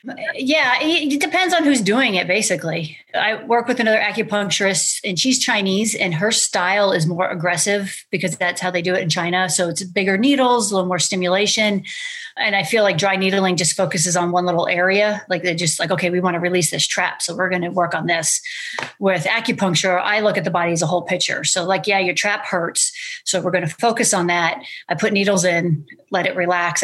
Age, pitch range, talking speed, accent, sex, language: 30-49, 175-215 Hz, 220 wpm, American, female, English